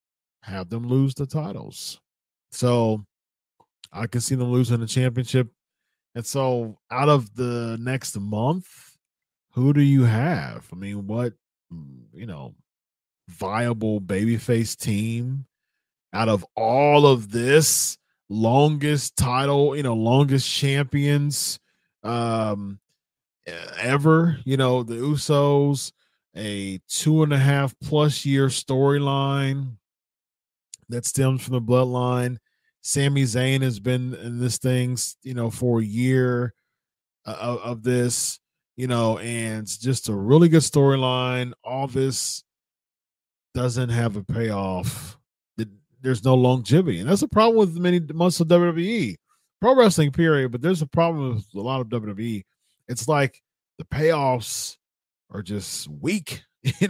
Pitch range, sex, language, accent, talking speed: 115-140 Hz, male, English, American, 130 wpm